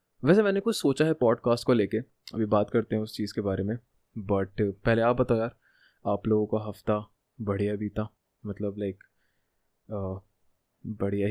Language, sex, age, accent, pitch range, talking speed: Hindi, male, 20-39, native, 105-125 Hz, 155 wpm